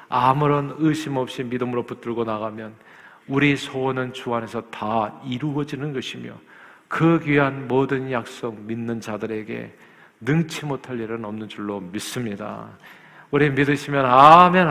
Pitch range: 115-135 Hz